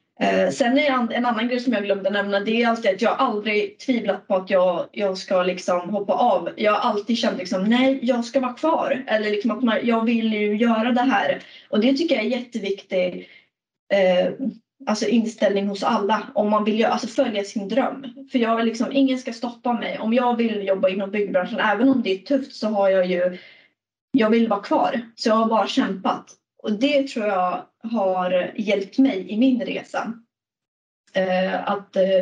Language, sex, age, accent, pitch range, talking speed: Swedish, female, 30-49, native, 200-260 Hz, 195 wpm